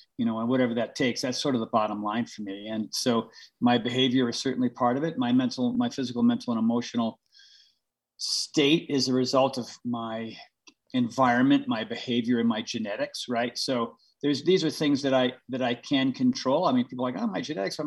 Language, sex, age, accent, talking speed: English, male, 40-59, American, 210 wpm